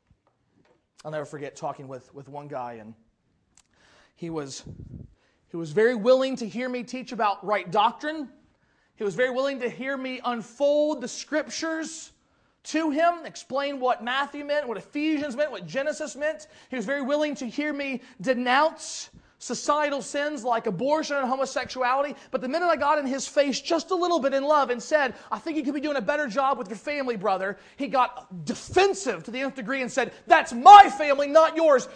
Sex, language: male, English